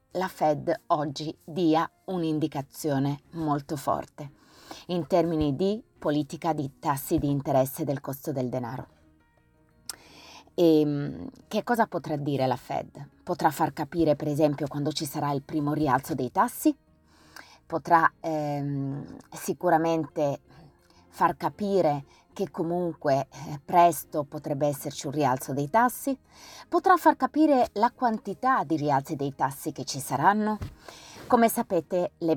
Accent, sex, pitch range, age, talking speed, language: native, female, 145-195 Hz, 20-39, 125 wpm, Italian